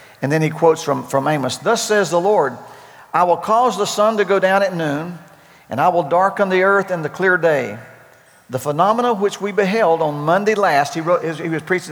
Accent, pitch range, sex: American, 155-200 Hz, male